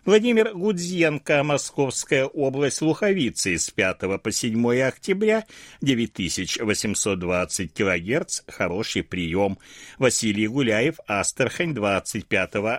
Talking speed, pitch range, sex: 85 wpm, 100-155 Hz, male